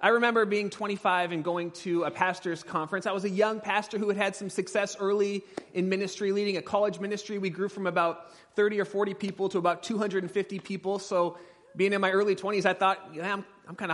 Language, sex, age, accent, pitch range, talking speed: English, male, 30-49, American, 180-215 Hz, 230 wpm